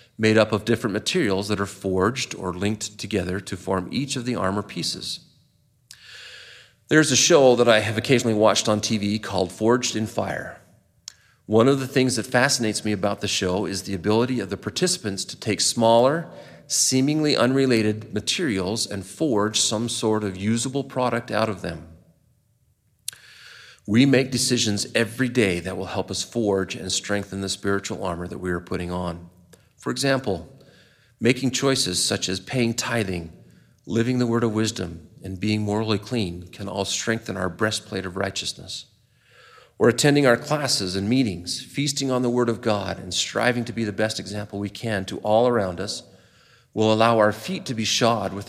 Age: 40-59